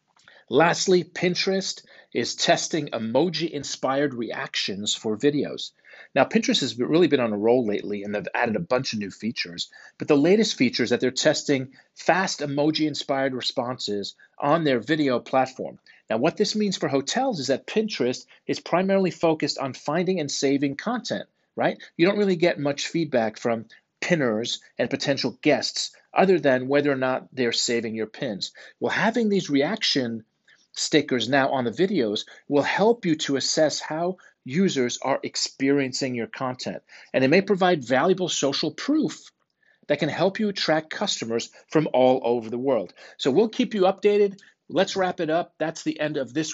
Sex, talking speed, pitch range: male, 170 wpm, 130-180 Hz